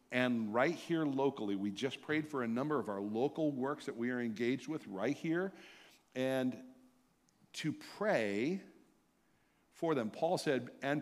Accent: American